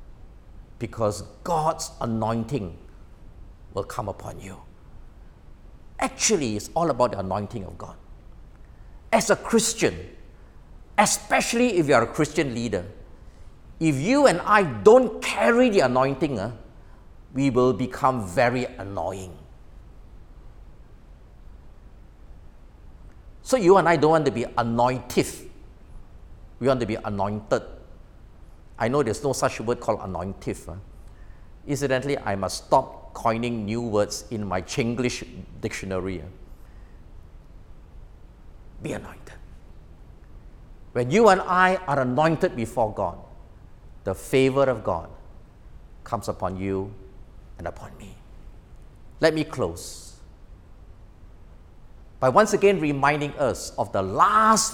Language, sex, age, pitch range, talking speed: English, male, 50-69, 90-130 Hz, 115 wpm